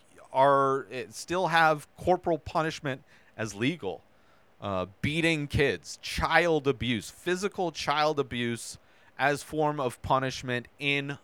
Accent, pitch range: American, 105-130 Hz